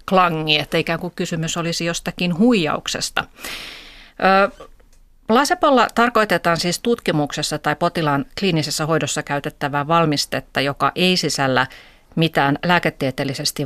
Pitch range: 145-175 Hz